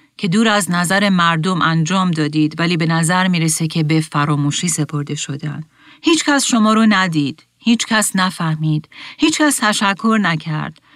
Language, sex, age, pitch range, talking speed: Persian, female, 40-59, 155-205 Hz, 140 wpm